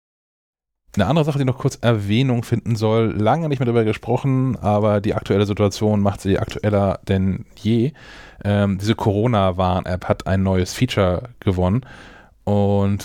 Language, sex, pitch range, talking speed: German, male, 95-115 Hz, 145 wpm